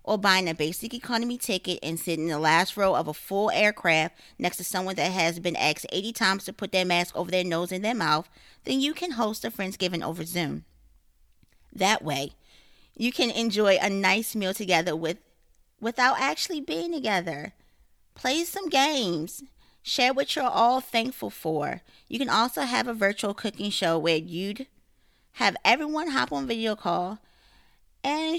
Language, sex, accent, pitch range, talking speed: English, female, American, 170-240 Hz, 175 wpm